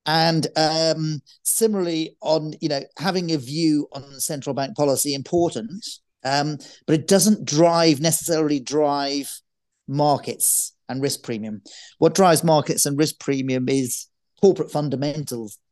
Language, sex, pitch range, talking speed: English, male, 135-160 Hz, 130 wpm